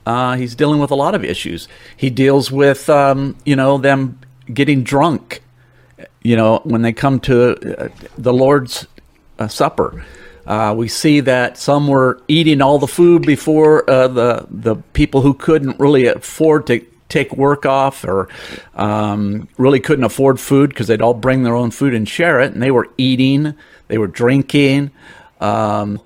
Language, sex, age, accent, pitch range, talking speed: English, male, 50-69, American, 115-140 Hz, 175 wpm